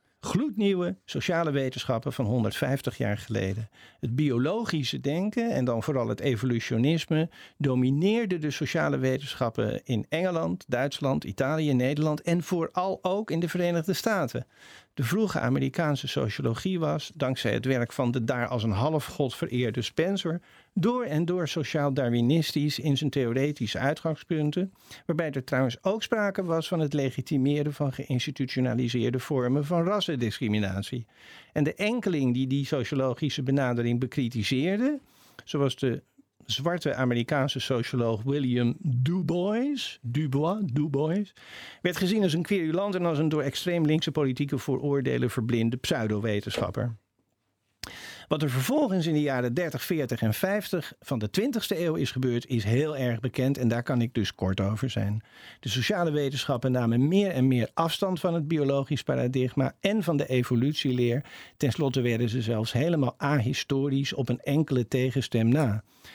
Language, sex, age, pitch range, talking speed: Dutch, male, 50-69, 125-165 Hz, 140 wpm